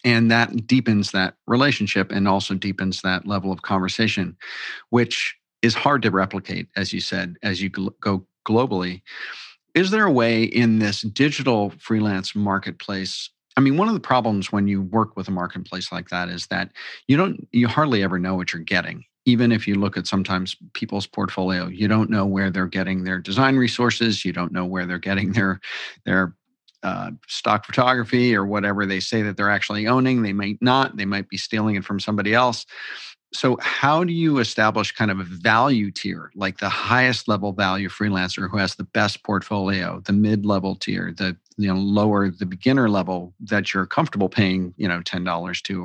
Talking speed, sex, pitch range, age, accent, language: 190 wpm, male, 95-115 Hz, 40-59, American, English